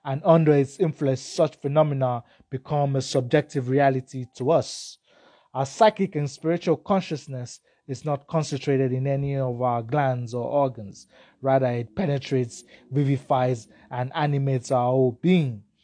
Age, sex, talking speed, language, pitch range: 20-39, male, 135 wpm, English, 125-145 Hz